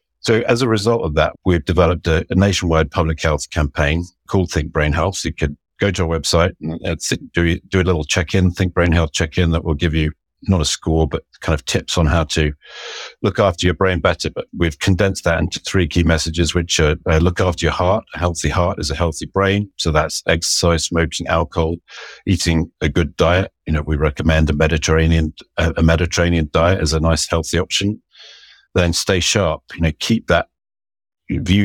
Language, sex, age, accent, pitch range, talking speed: English, male, 50-69, British, 80-95 Hz, 200 wpm